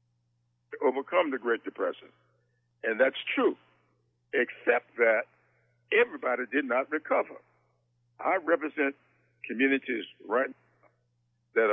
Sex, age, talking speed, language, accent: male, 60-79, 95 wpm, English, American